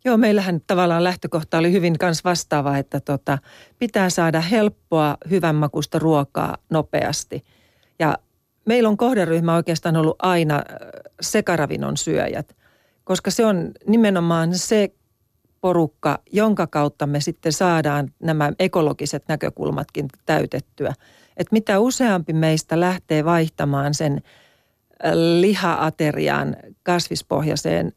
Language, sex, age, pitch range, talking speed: Finnish, female, 40-59, 150-185 Hz, 105 wpm